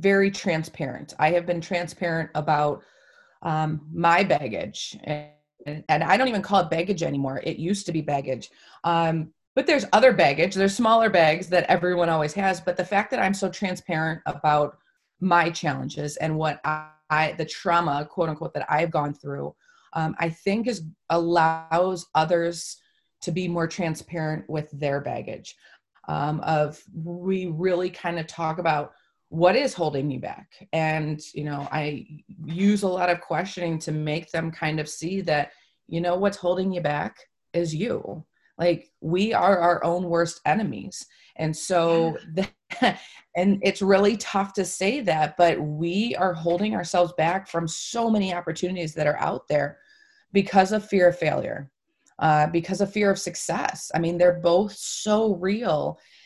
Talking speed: 165 wpm